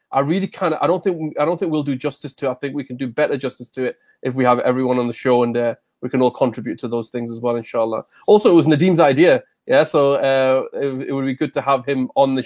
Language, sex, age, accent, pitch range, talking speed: English, male, 30-49, British, 125-160 Hz, 280 wpm